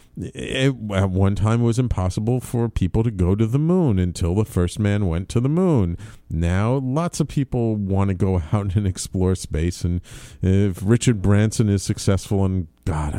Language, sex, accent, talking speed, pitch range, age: English, male, American, 180 wpm, 95-115 Hz, 50-69